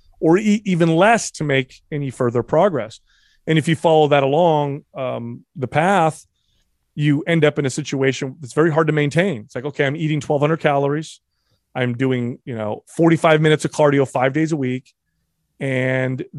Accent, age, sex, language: American, 30-49, male, English